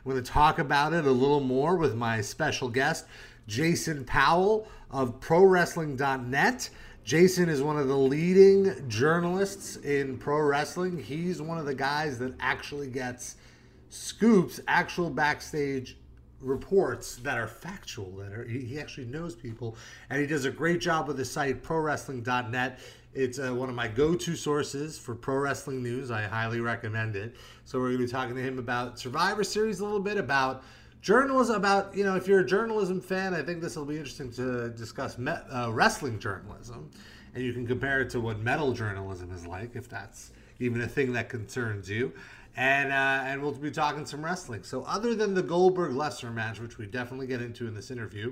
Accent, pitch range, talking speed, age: American, 120-160 Hz, 185 wpm, 30-49